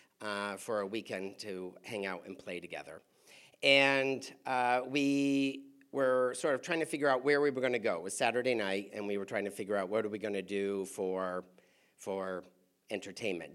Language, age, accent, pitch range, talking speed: English, 50-69, American, 115-160 Hz, 205 wpm